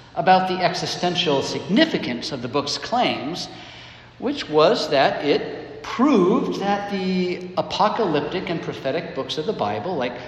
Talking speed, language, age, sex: 135 wpm, English, 50-69, male